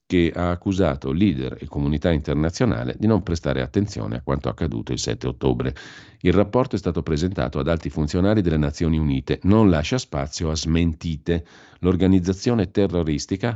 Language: Italian